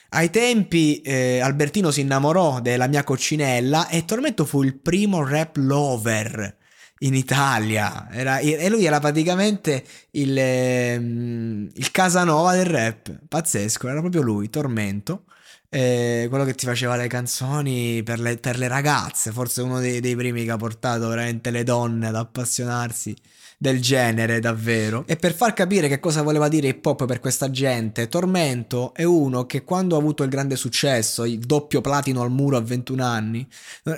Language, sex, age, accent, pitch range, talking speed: Italian, male, 20-39, native, 120-155 Hz, 165 wpm